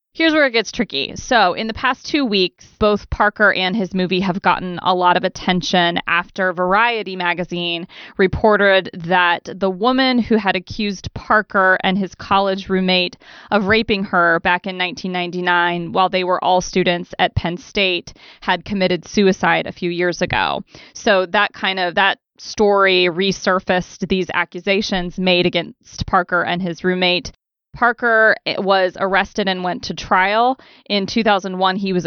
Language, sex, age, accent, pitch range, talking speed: English, female, 20-39, American, 180-205 Hz, 155 wpm